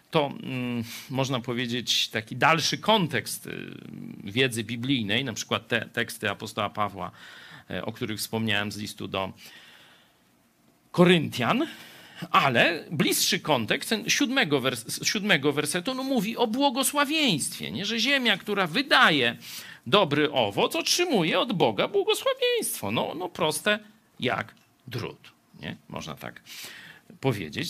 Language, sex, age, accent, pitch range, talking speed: Polish, male, 50-69, native, 130-195 Hz, 105 wpm